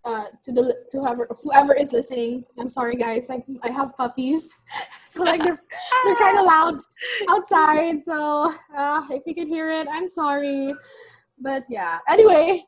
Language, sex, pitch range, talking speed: English, female, 245-350 Hz, 165 wpm